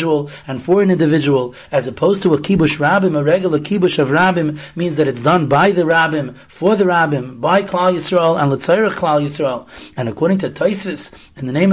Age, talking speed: 30-49, 200 wpm